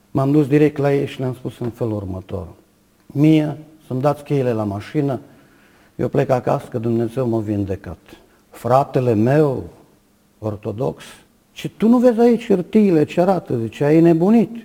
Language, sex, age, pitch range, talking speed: Romanian, male, 50-69, 110-155 Hz, 160 wpm